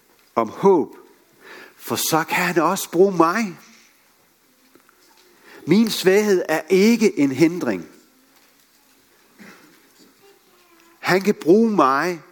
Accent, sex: native, male